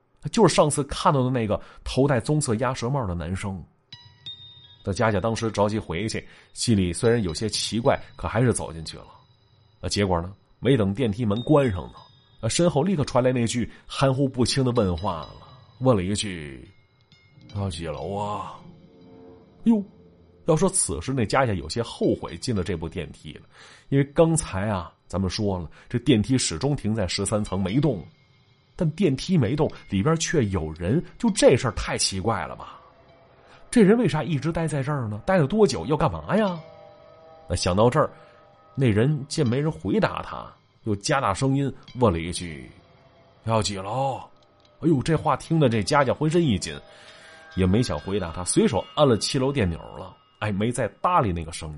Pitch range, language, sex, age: 95-140 Hz, Chinese, male, 30-49